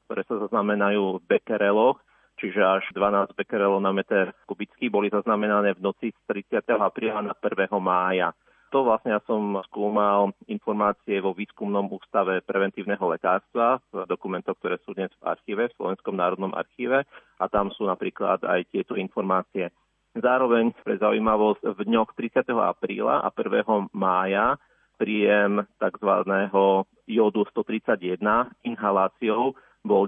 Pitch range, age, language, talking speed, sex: 95-110 Hz, 40-59, Slovak, 130 wpm, male